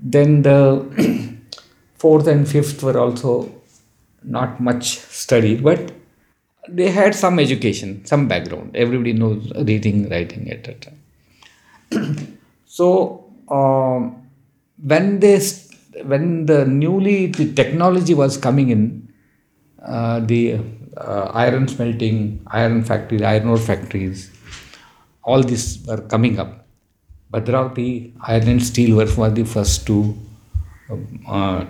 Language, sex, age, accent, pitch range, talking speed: English, male, 50-69, Indian, 110-140 Hz, 115 wpm